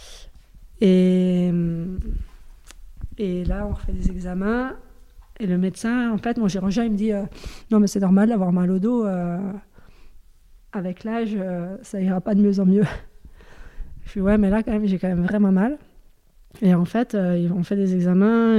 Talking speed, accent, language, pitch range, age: 195 wpm, French, French, 180-210 Hz, 20-39